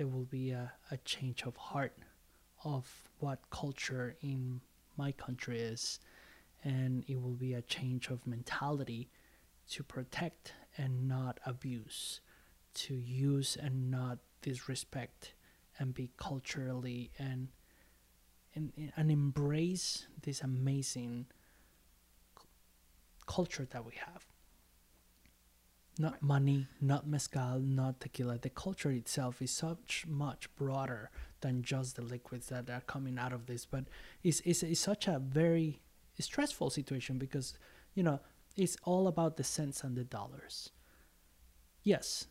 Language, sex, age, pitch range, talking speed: English, male, 20-39, 120-145 Hz, 130 wpm